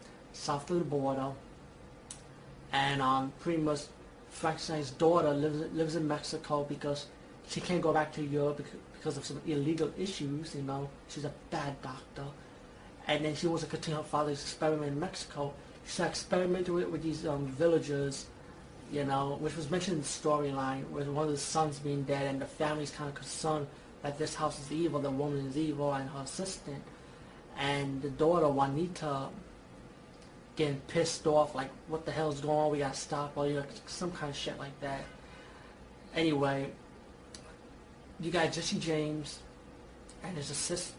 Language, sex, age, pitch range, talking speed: English, male, 30-49, 140-160 Hz, 170 wpm